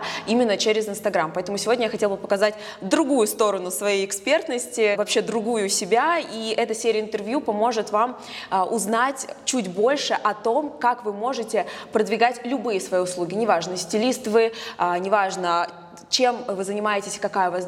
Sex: female